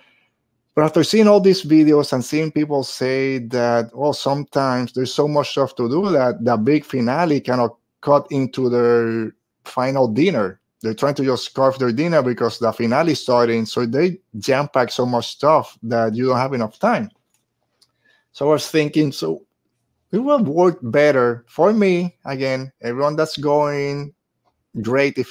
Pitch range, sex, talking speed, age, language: 120-145 Hz, male, 170 wpm, 30-49, English